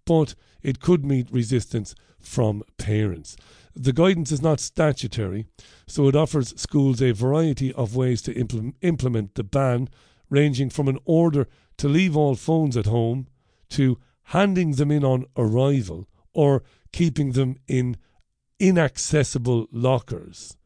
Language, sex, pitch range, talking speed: English, male, 110-140 Hz, 135 wpm